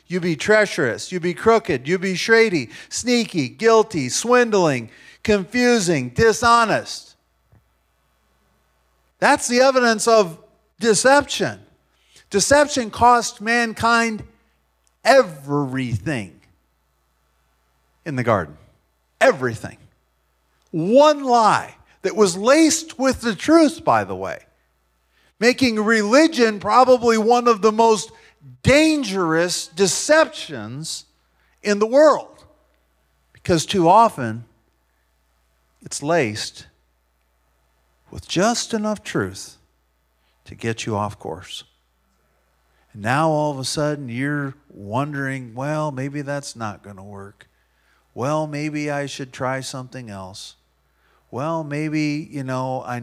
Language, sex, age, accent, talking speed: English, male, 40-59, American, 100 wpm